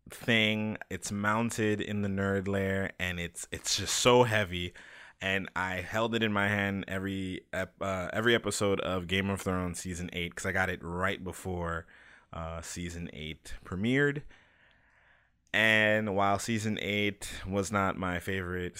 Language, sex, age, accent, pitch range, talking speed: English, male, 20-39, American, 85-110 Hz, 155 wpm